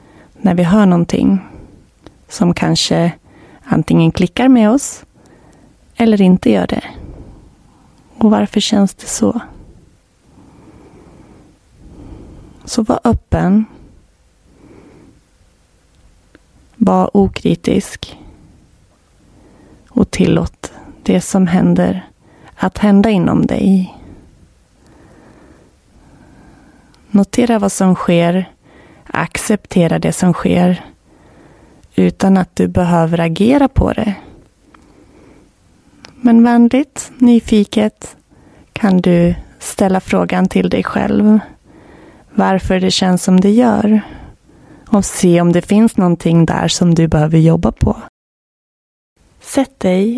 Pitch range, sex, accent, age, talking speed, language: 155-215 Hz, female, native, 30-49, 95 wpm, Swedish